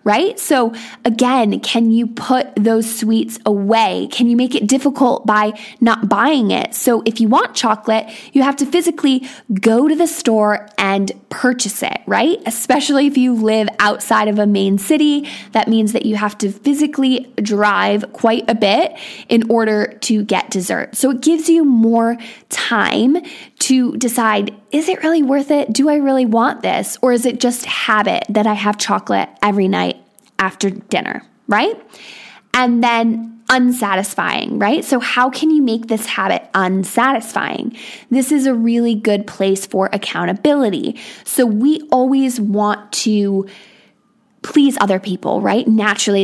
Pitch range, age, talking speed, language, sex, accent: 210-270 Hz, 20-39, 160 wpm, English, female, American